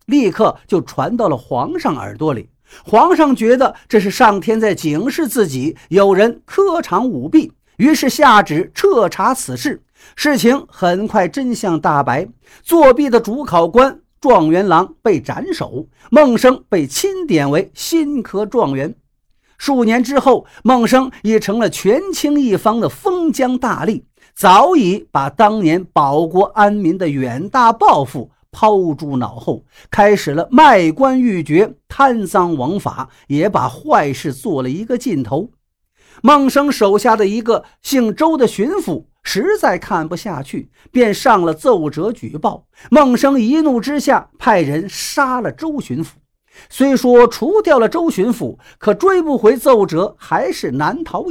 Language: Chinese